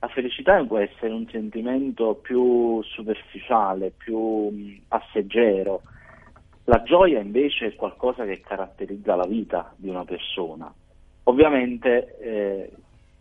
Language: Italian